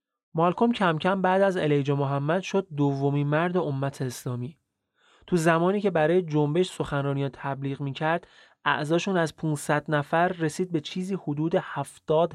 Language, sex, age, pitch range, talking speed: Persian, male, 30-49, 145-180 Hz, 145 wpm